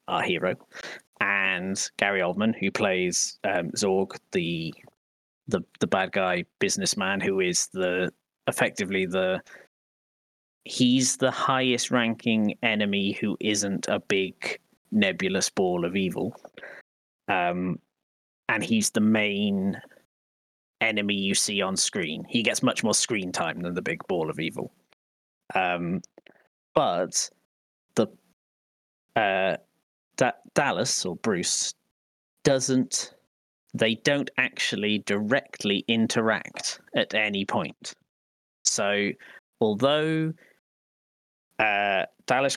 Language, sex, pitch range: English, male, 95-120 Hz